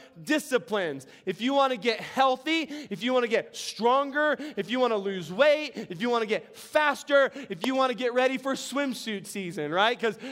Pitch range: 205-250 Hz